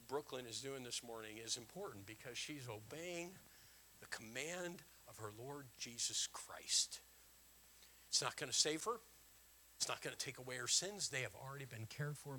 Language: English